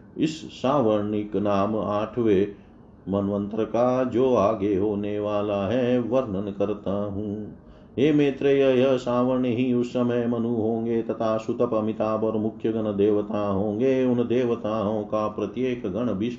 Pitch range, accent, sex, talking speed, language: 100-125 Hz, native, male, 115 wpm, Hindi